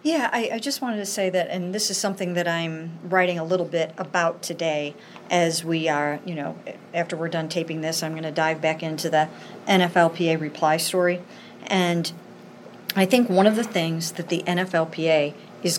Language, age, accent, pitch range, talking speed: English, 50-69, American, 165-190 Hz, 195 wpm